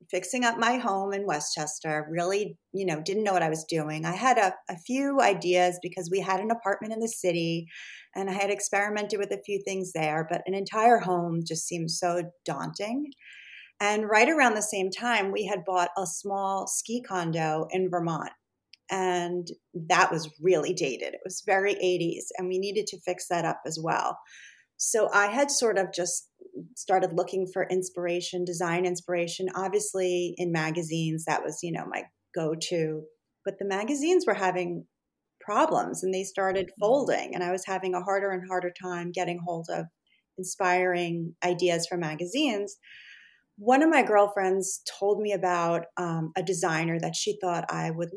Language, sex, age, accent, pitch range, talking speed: English, female, 30-49, American, 175-205 Hz, 175 wpm